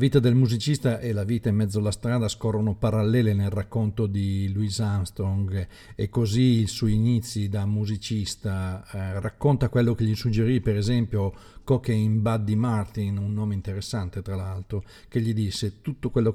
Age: 50-69